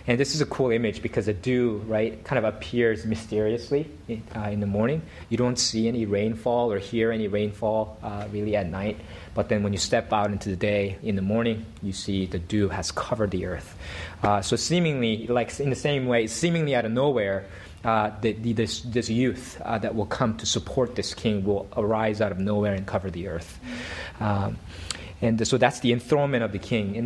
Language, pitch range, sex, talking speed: English, 100-130 Hz, male, 215 wpm